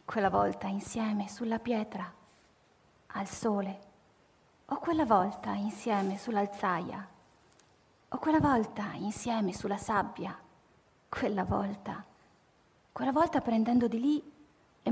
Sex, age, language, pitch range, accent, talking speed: female, 30-49, Italian, 205-245 Hz, native, 105 wpm